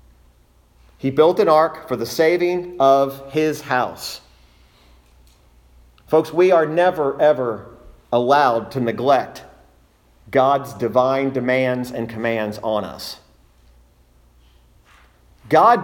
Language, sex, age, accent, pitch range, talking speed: English, male, 40-59, American, 100-150 Hz, 100 wpm